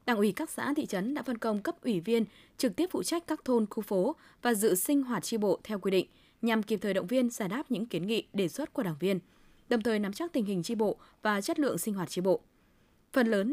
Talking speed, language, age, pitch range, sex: 270 wpm, Vietnamese, 20-39, 185-255 Hz, female